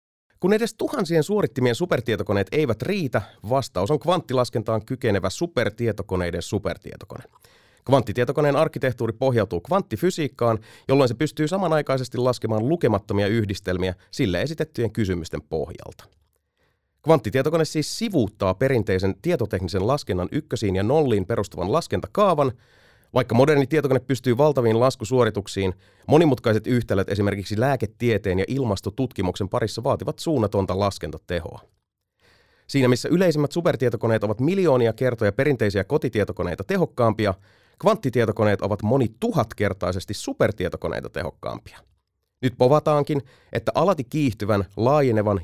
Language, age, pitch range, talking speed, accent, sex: Finnish, 30-49, 100-140 Hz, 100 wpm, native, male